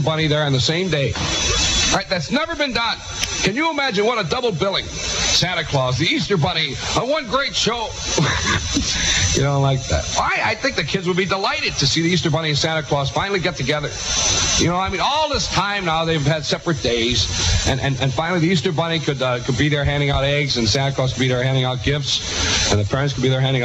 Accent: American